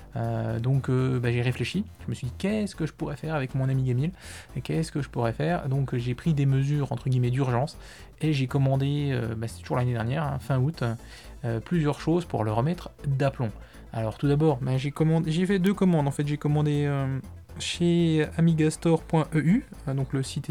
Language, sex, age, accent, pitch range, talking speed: French, male, 20-39, French, 125-150 Hz, 210 wpm